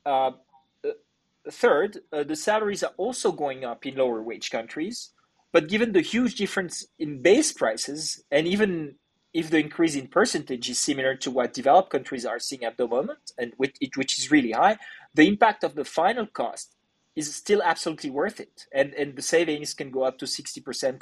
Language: English